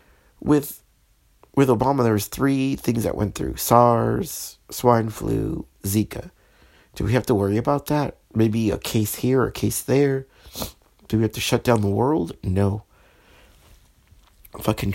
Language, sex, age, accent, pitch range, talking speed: English, male, 50-69, American, 100-125 Hz, 150 wpm